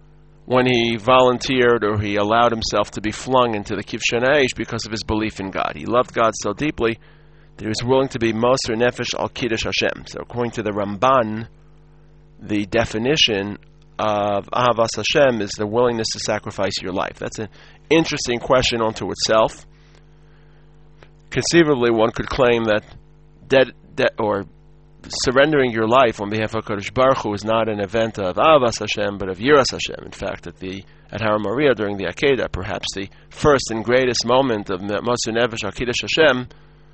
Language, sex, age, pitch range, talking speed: English, male, 40-59, 105-140 Hz, 170 wpm